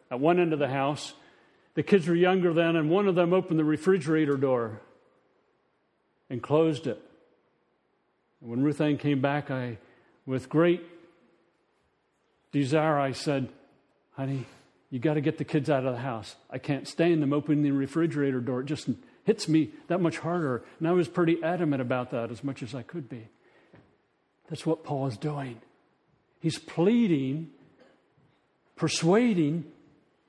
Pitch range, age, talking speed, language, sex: 130-170 Hz, 40-59, 160 wpm, English, male